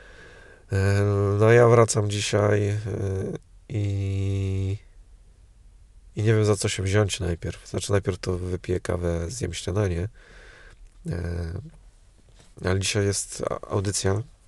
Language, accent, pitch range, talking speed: Polish, native, 90-100 Hz, 105 wpm